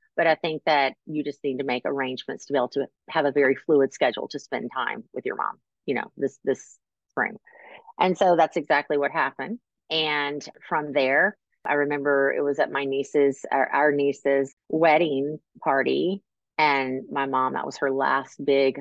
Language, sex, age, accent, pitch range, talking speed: English, female, 30-49, American, 130-155 Hz, 190 wpm